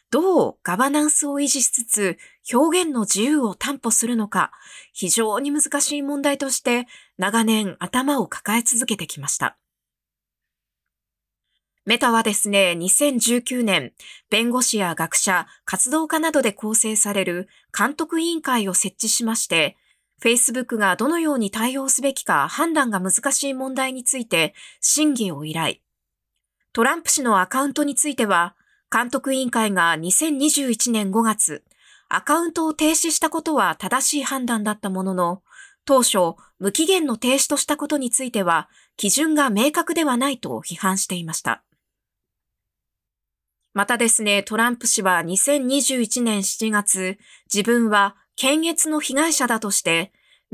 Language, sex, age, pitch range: Japanese, female, 20-39, 195-280 Hz